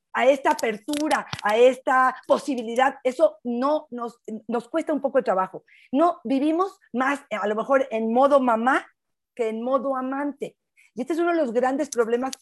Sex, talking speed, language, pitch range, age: female, 175 wpm, Spanish, 230-300 Hz, 40-59